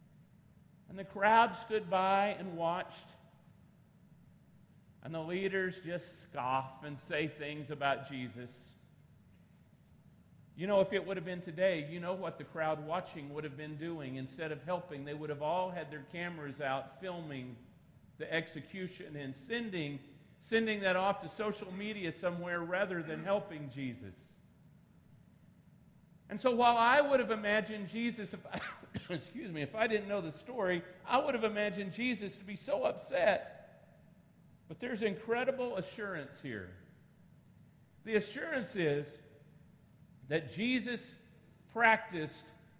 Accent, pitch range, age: American, 155-210 Hz, 50-69